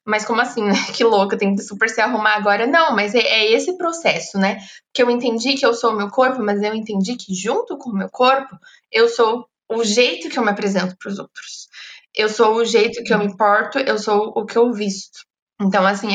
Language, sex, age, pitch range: Portuguese, female, 20-39, 200-240 Hz